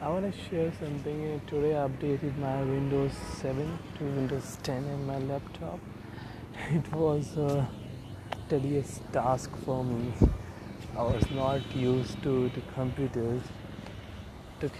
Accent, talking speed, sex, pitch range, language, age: native, 130 wpm, male, 105-140 Hz, Hindi, 20-39